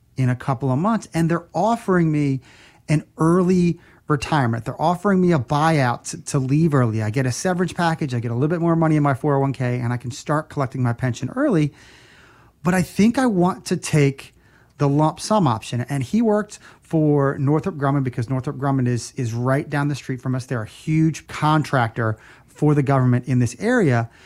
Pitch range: 130-170 Hz